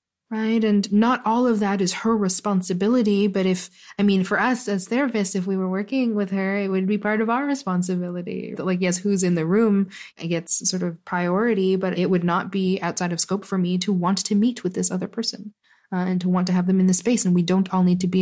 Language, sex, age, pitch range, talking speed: English, female, 20-39, 180-205 Hz, 245 wpm